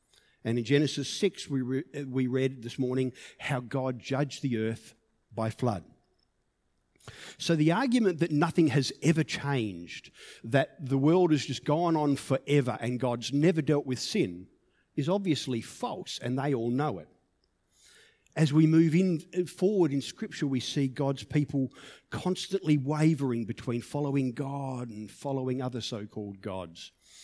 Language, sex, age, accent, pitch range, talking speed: English, male, 50-69, Australian, 115-150 Hz, 150 wpm